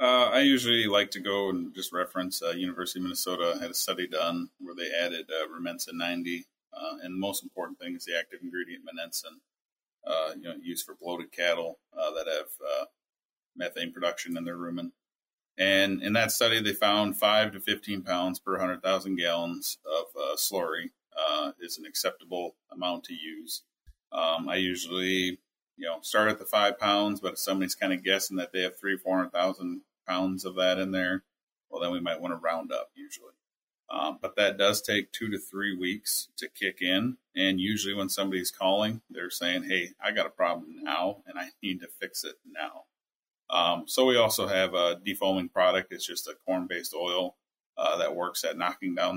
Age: 30-49